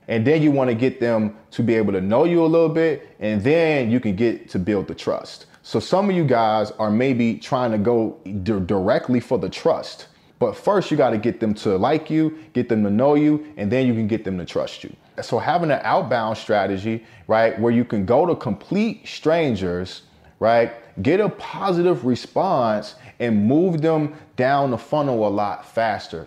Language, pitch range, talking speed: English, 105-130 Hz, 200 wpm